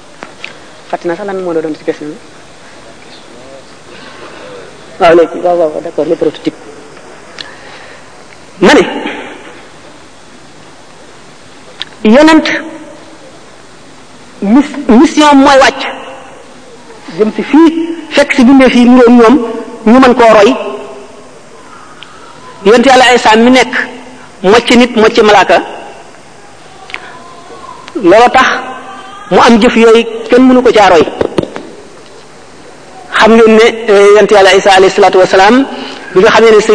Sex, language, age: female, French, 50-69